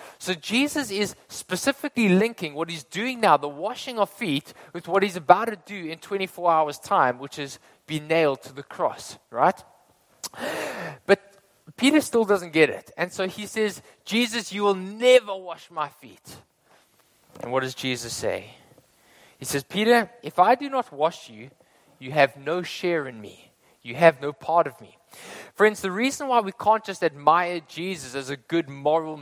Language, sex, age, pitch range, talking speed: English, male, 20-39, 155-205 Hz, 180 wpm